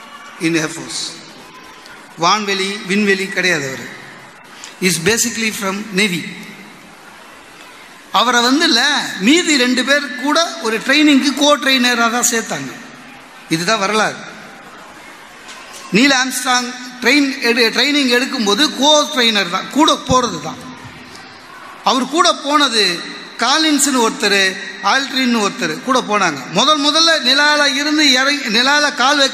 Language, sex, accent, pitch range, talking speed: Tamil, male, native, 215-285 Hz, 75 wpm